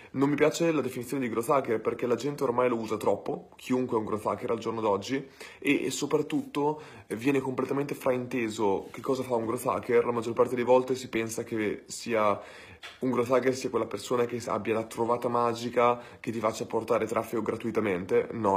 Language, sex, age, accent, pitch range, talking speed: Italian, male, 20-39, native, 110-130 Hz, 195 wpm